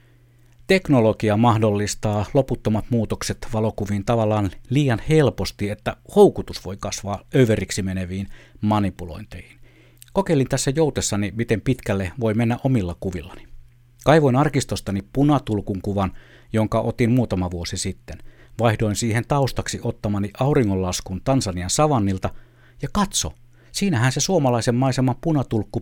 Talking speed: 110 wpm